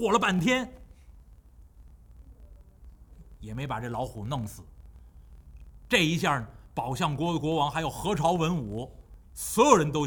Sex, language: male, Chinese